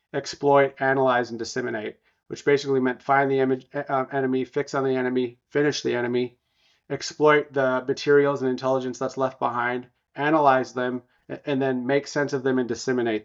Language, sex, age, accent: English, male, 30-49, American